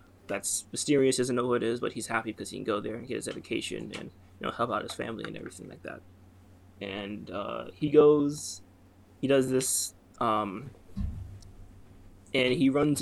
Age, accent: 20-39, American